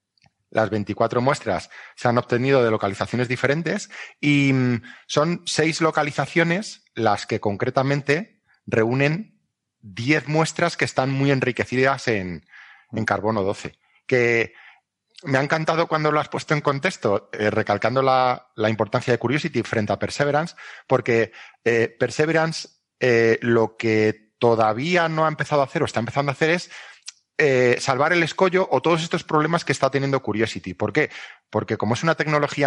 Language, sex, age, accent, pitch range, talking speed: Spanish, male, 30-49, Spanish, 115-160 Hz, 155 wpm